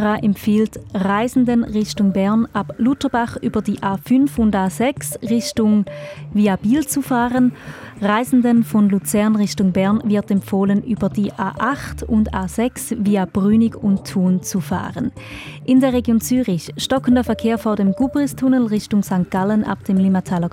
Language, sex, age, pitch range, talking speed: German, female, 20-39, 195-235 Hz, 145 wpm